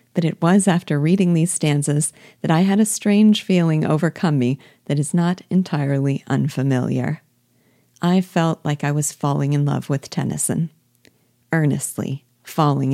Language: English